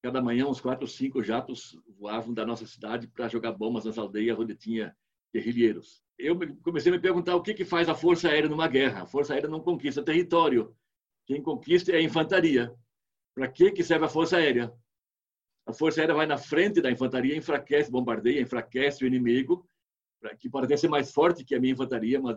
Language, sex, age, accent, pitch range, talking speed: Portuguese, male, 60-79, Brazilian, 120-160 Hz, 200 wpm